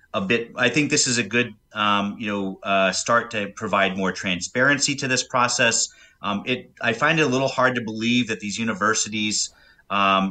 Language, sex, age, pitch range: English, male, 30-49, 95-120 Hz